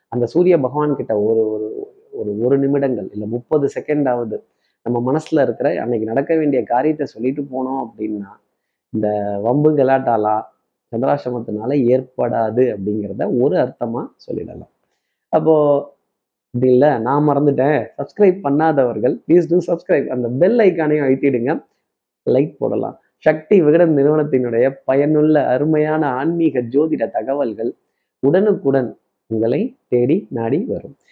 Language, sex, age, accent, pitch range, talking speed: Tamil, male, 20-39, native, 130-175 Hz, 110 wpm